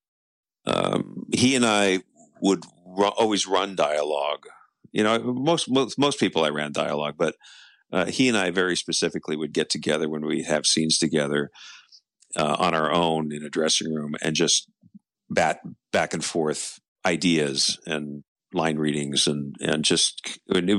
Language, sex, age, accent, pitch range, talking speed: English, male, 50-69, American, 75-105 Hz, 155 wpm